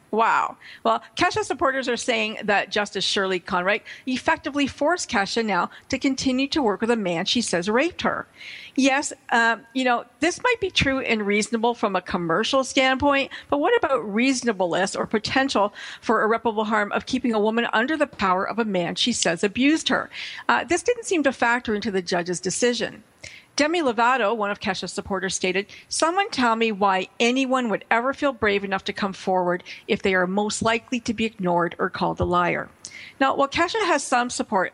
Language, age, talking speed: English, 50-69, 190 wpm